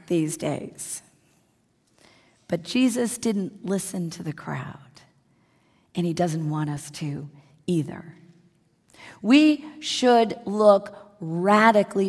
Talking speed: 100 wpm